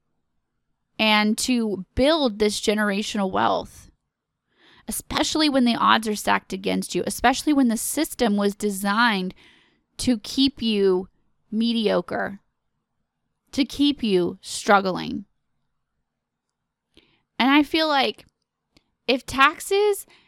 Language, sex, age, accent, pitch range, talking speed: English, female, 20-39, American, 200-245 Hz, 100 wpm